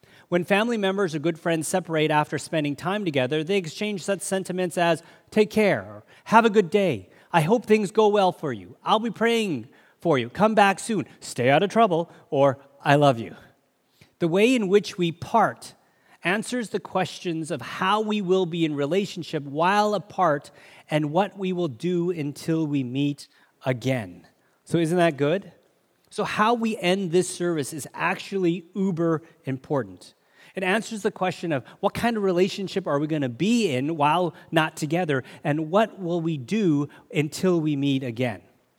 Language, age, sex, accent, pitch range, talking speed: English, 30-49, male, American, 145-190 Hz, 175 wpm